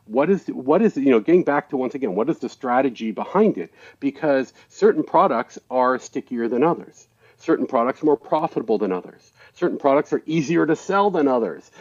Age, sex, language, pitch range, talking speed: 40-59, male, English, 120-170 Hz, 200 wpm